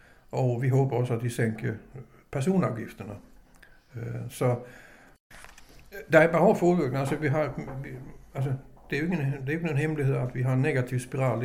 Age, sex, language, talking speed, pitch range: 60-79, male, Danish, 135 wpm, 115-135 Hz